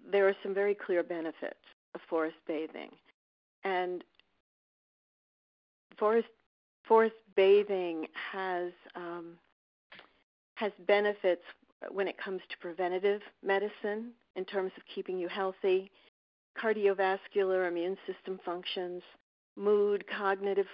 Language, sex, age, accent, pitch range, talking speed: English, female, 50-69, American, 180-205 Hz, 100 wpm